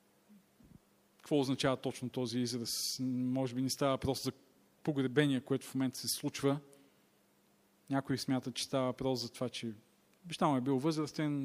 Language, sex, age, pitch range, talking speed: Bulgarian, male, 40-59, 135-175 Hz, 150 wpm